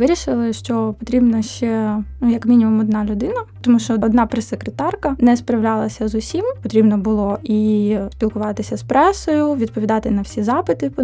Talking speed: 150 wpm